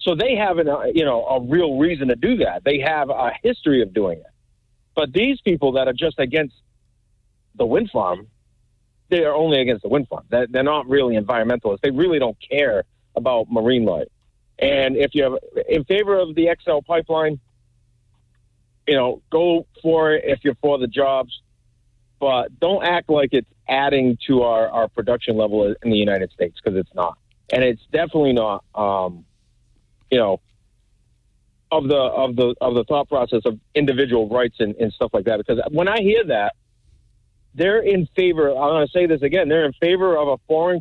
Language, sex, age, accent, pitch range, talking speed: English, male, 50-69, American, 115-160 Hz, 190 wpm